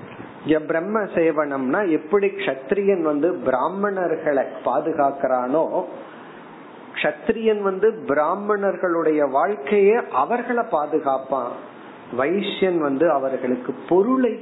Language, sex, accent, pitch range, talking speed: Tamil, male, native, 140-195 Hz, 45 wpm